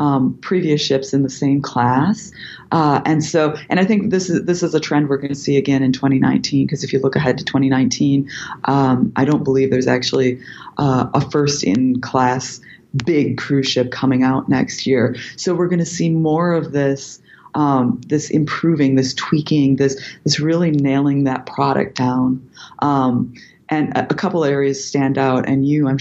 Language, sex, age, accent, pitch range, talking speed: English, female, 30-49, American, 130-150 Hz, 185 wpm